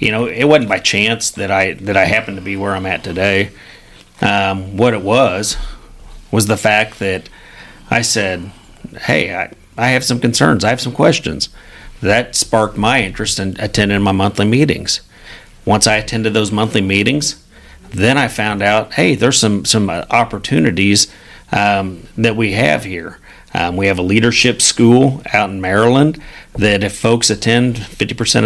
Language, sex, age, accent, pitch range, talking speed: English, male, 40-59, American, 100-120 Hz, 170 wpm